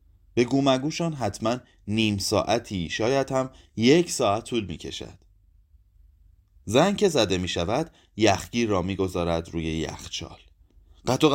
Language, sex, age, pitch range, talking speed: Persian, male, 30-49, 85-130 Hz, 115 wpm